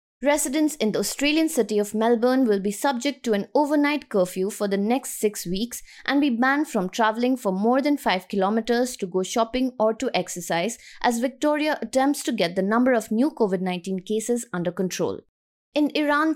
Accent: Indian